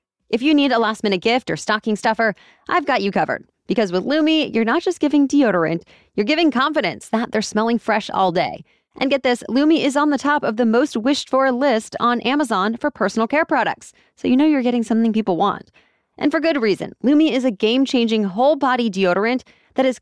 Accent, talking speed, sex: American, 205 wpm, female